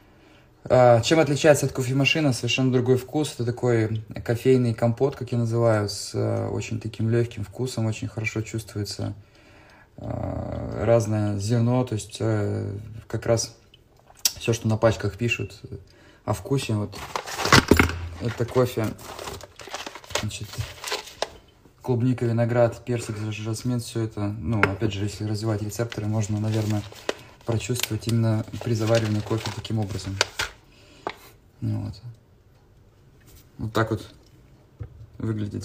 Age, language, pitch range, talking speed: 20-39, Russian, 105-120 Hz, 110 wpm